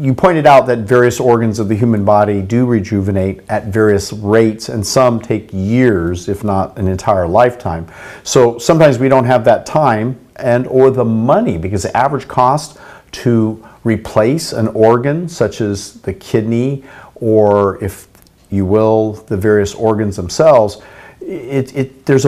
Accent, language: American, English